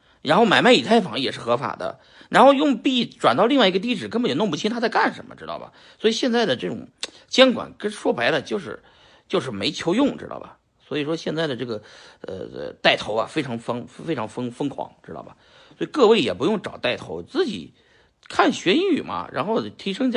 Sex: male